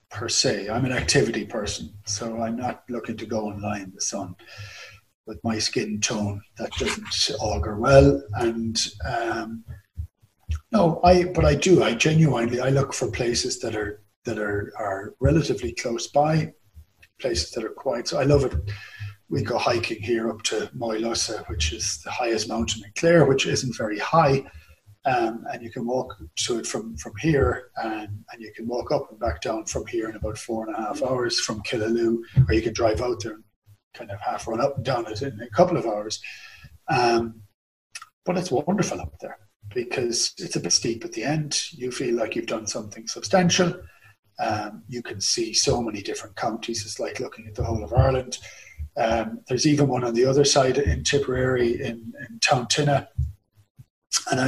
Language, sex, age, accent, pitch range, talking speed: English, male, 30-49, Irish, 105-135 Hz, 190 wpm